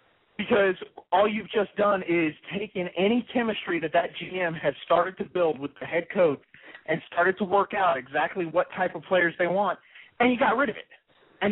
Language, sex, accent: English, male, American